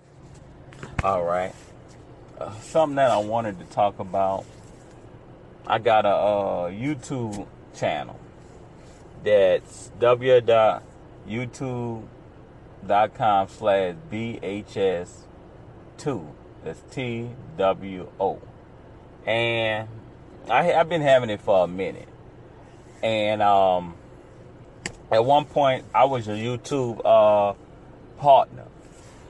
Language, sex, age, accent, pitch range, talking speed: English, male, 30-49, American, 105-130 Hz, 85 wpm